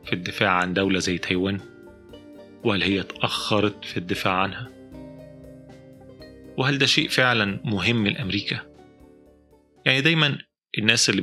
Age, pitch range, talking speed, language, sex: 30-49, 100-115 Hz, 120 wpm, Arabic, male